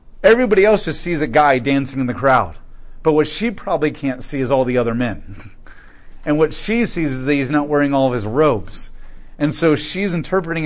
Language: English